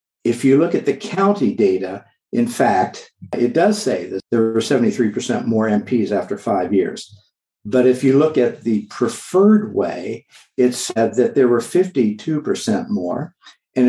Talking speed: 160 wpm